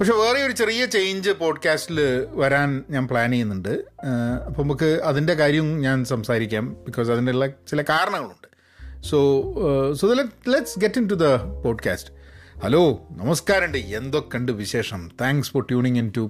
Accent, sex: native, male